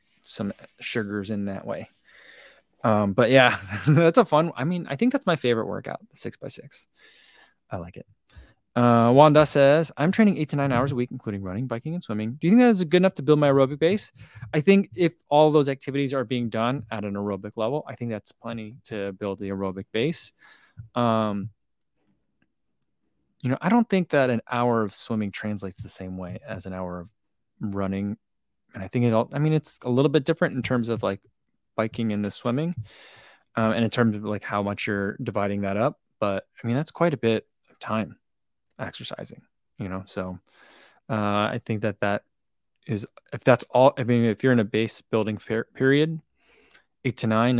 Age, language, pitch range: 20-39, English, 105-140 Hz